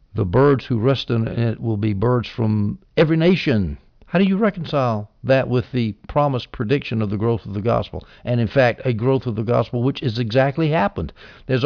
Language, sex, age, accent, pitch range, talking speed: English, male, 60-79, American, 110-135 Hz, 205 wpm